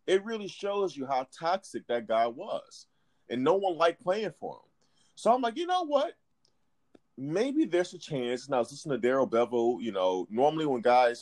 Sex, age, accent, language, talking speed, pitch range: male, 30-49, American, English, 205 wpm, 110-155 Hz